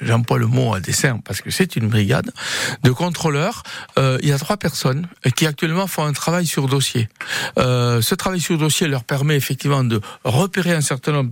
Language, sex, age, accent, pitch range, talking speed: French, male, 60-79, French, 125-170 Hz, 200 wpm